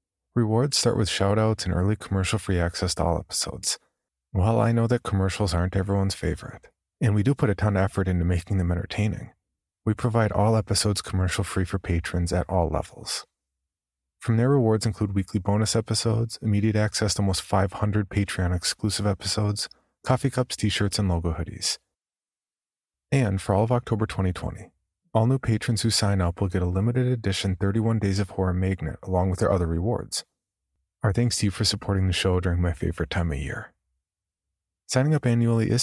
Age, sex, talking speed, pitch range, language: 30-49, male, 180 wpm, 90-110 Hz, English